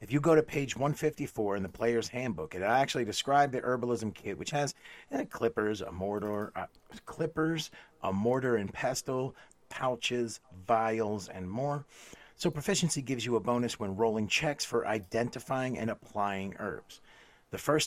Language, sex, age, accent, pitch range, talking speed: English, male, 40-59, American, 100-130 Hz, 160 wpm